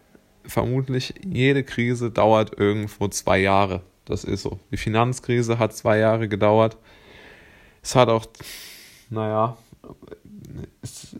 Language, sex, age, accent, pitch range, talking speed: German, male, 20-39, German, 105-125 Hz, 115 wpm